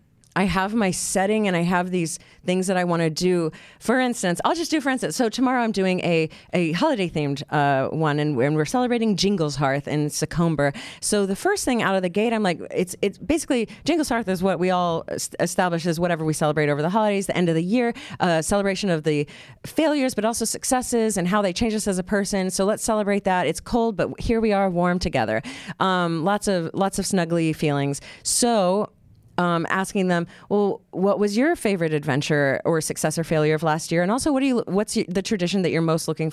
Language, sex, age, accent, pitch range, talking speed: English, female, 30-49, American, 160-210 Hz, 220 wpm